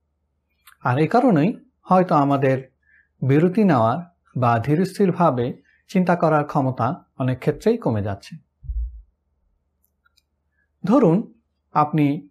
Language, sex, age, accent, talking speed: Bengali, male, 60-79, native, 95 wpm